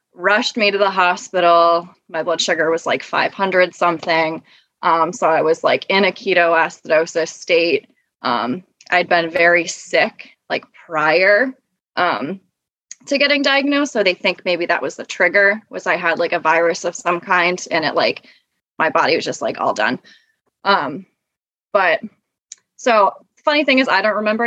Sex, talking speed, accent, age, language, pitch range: female, 170 wpm, American, 20-39, English, 170-220 Hz